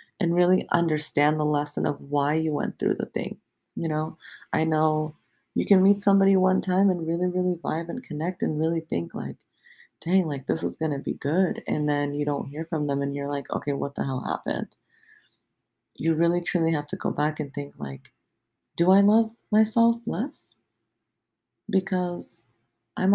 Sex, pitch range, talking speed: female, 145-195 Hz, 185 wpm